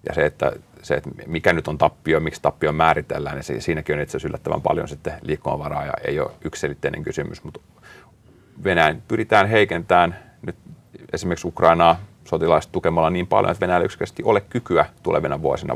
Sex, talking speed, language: male, 165 wpm, Finnish